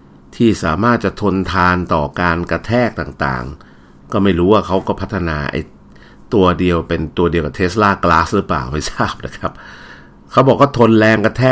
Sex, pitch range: male, 75-105 Hz